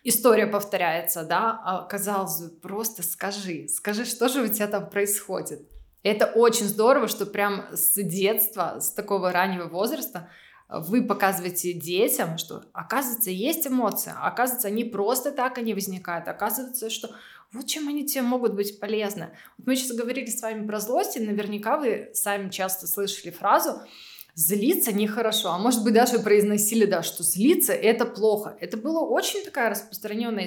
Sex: female